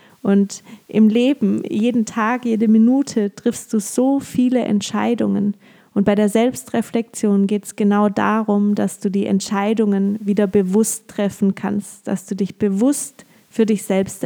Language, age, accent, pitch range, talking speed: German, 20-39, German, 200-230 Hz, 145 wpm